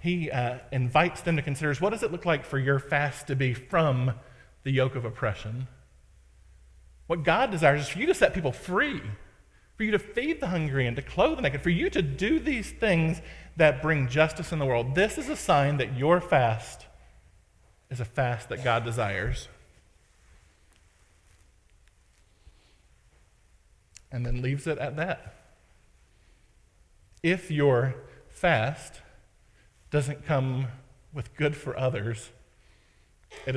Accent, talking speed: American, 150 wpm